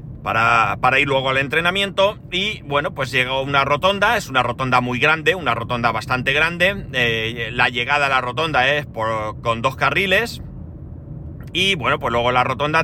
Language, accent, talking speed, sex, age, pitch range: Spanish, Spanish, 180 wpm, male, 30-49, 120-145 Hz